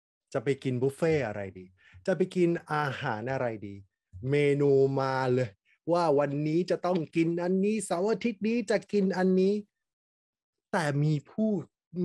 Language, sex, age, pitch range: Thai, male, 20-39, 130-170 Hz